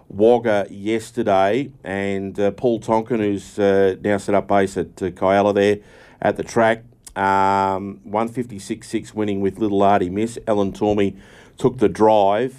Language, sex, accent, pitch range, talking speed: English, male, Australian, 90-105 Hz, 150 wpm